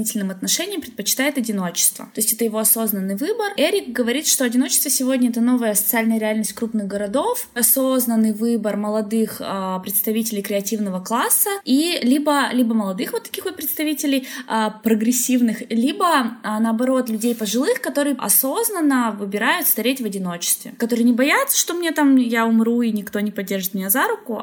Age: 20-39